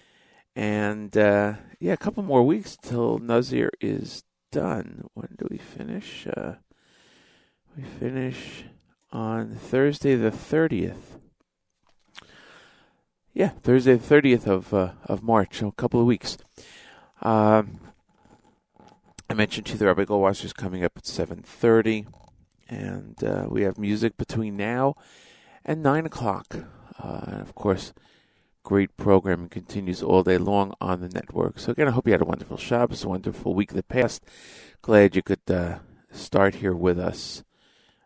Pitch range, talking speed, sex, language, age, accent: 100-130 Hz, 155 wpm, male, English, 40-59, American